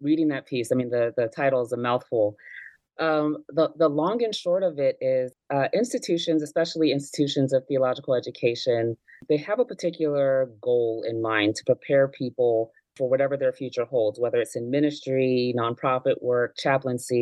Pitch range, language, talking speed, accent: 120-155 Hz, English, 170 wpm, American